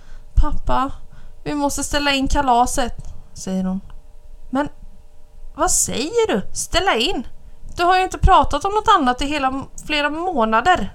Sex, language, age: female, Swedish, 20-39